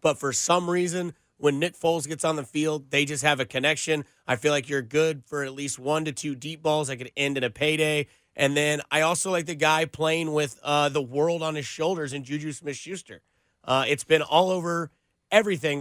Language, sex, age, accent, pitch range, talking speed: English, male, 30-49, American, 145-165 Hz, 220 wpm